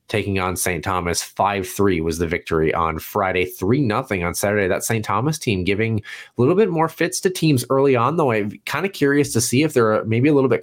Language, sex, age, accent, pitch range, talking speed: English, male, 30-49, American, 90-110 Hz, 225 wpm